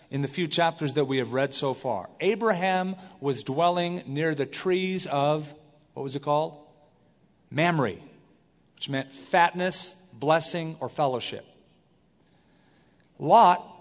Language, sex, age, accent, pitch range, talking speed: English, male, 40-59, American, 135-175 Hz, 125 wpm